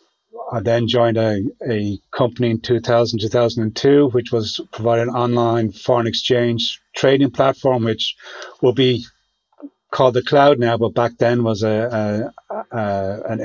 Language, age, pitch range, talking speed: English, 30-49, 110-125 Hz, 145 wpm